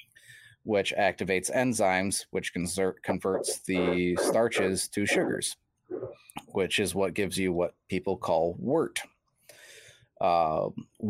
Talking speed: 105 wpm